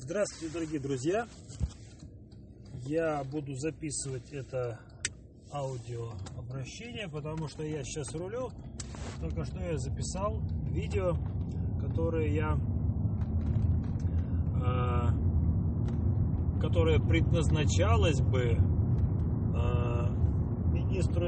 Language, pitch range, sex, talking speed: Russian, 95-120 Hz, male, 70 wpm